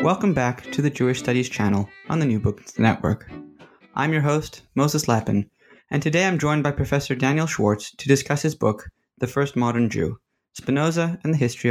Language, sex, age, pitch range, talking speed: English, male, 20-39, 110-145 Hz, 190 wpm